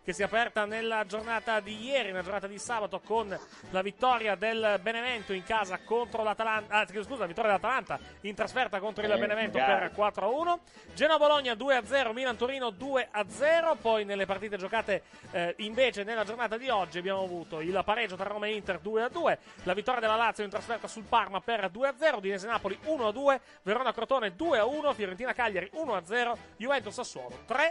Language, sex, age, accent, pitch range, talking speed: Italian, male, 30-49, native, 210-265 Hz, 160 wpm